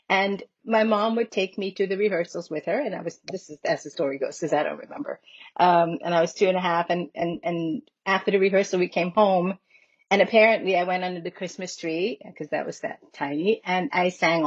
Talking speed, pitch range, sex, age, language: 235 wpm, 165-195 Hz, female, 40-59, English